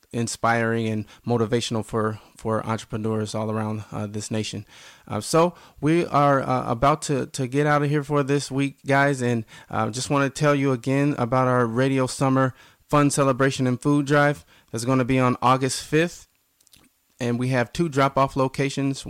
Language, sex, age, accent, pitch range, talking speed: English, male, 20-39, American, 115-135 Hz, 185 wpm